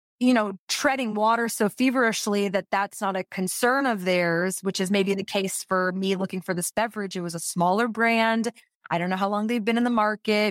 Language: English